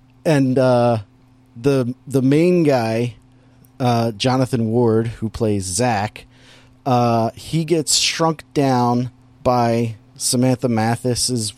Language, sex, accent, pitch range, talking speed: English, male, American, 120-140 Hz, 105 wpm